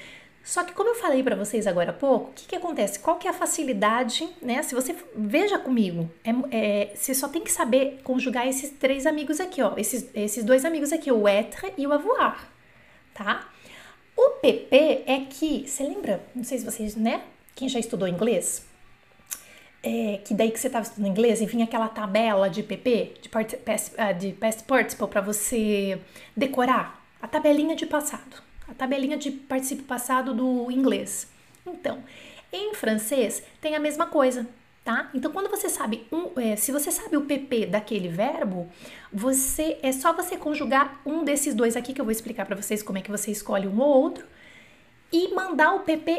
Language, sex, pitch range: French, female, 225-305 Hz